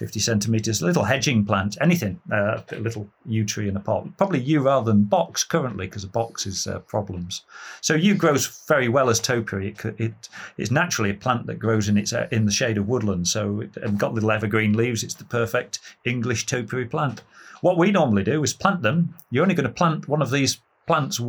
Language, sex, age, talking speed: English, male, 40-59, 205 wpm